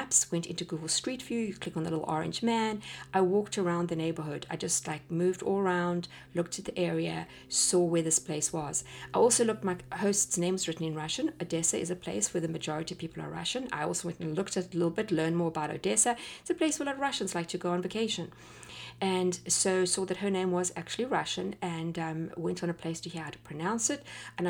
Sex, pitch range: female, 165-215 Hz